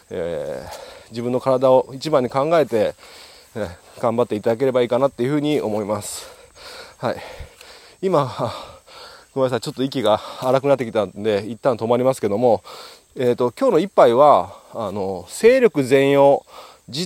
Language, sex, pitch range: Japanese, male, 120-200 Hz